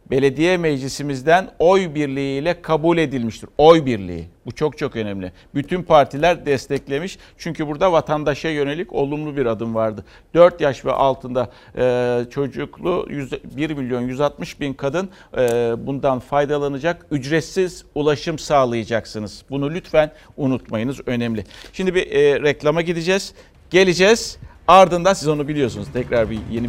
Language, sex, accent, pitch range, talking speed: Turkish, male, native, 110-150 Hz, 120 wpm